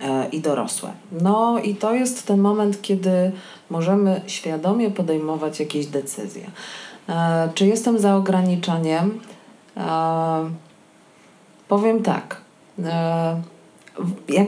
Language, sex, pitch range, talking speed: Polish, female, 155-195 Hz, 85 wpm